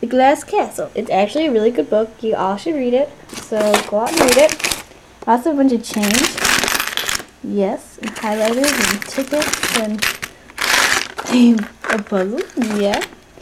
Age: 10-29